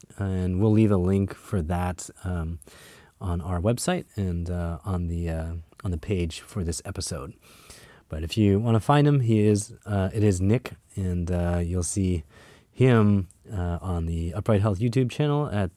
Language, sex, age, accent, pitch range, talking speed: English, male, 20-39, American, 95-135 Hz, 185 wpm